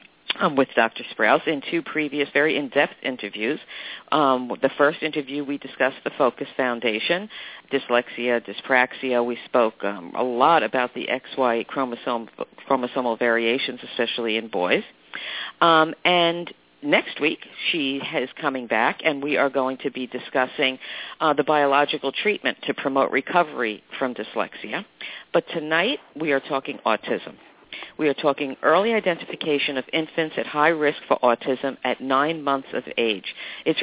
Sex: female